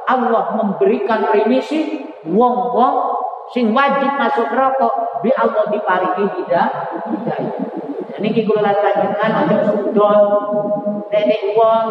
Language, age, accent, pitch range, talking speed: Indonesian, 40-59, native, 215-245 Hz, 100 wpm